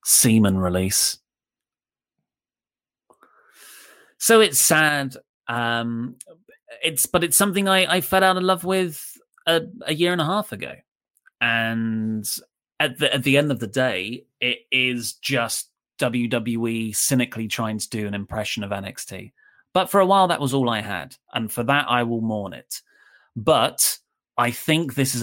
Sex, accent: male, British